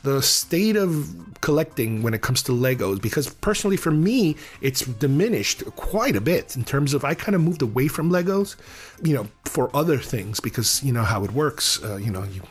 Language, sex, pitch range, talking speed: English, male, 120-155 Hz, 205 wpm